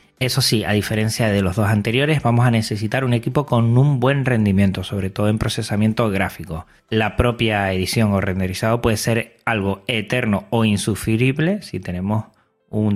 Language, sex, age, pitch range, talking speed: Spanish, male, 30-49, 100-125 Hz, 165 wpm